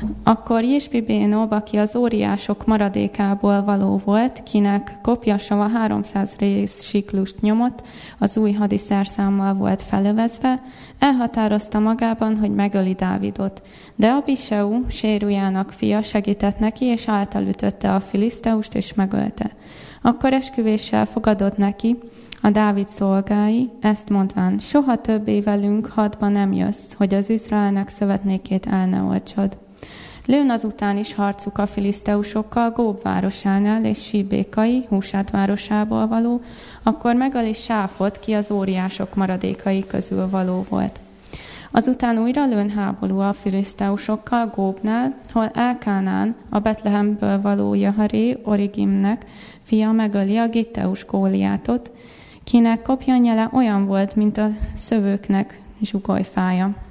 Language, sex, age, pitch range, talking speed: Hungarian, female, 20-39, 200-225 Hz, 115 wpm